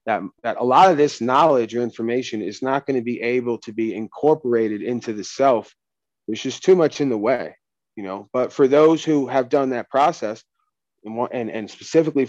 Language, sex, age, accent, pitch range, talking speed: English, male, 30-49, American, 115-135 Hz, 205 wpm